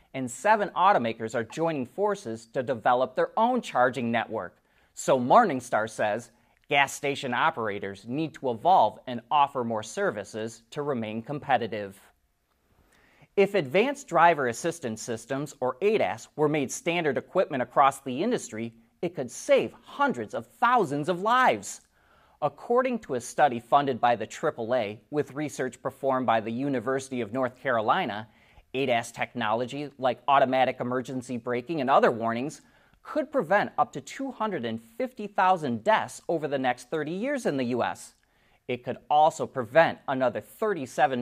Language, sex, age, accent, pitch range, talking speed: English, male, 30-49, American, 120-180 Hz, 140 wpm